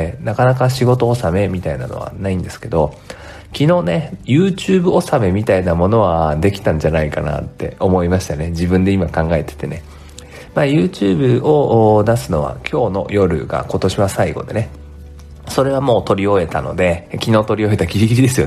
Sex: male